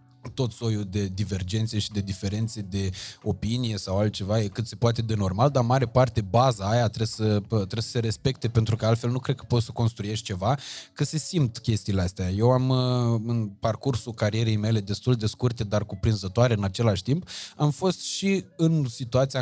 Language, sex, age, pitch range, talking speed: Romanian, male, 20-39, 105-140 Hz, 190 wpm